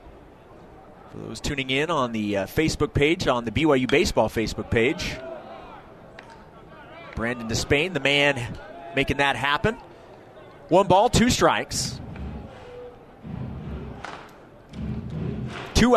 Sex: male